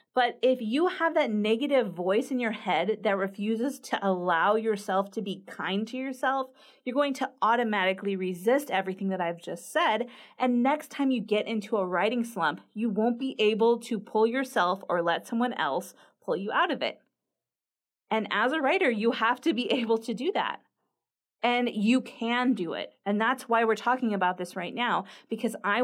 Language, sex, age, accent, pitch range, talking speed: English, female, 30-49, American, 195-245 Hz, 195 wpm